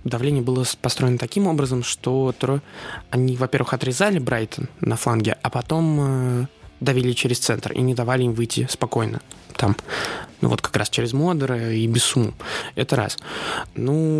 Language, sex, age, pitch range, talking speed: Russian, male, 20-39, 120-140 Hz, 150 wpm